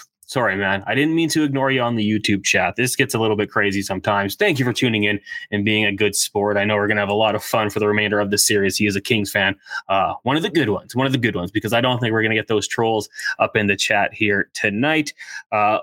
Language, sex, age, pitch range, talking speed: English, male, 20-39, 105-125 Hz, 295 wpm